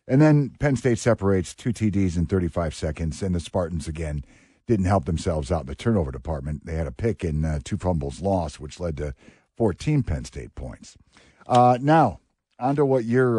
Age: 50-69